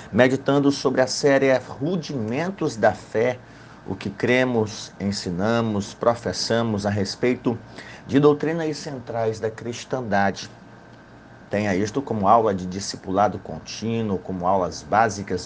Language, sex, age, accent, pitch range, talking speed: Portuguese, male, 50-69, Brazilian, 100-125 Hz, 115 wpm